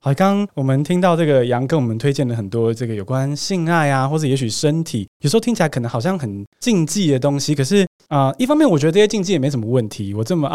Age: 20-39